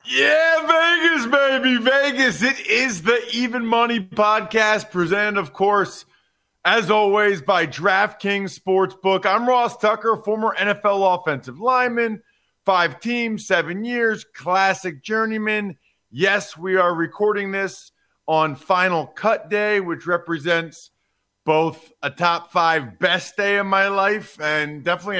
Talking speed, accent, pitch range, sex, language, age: 125 wpm, American, 145-205 Hz, male, English, 40-59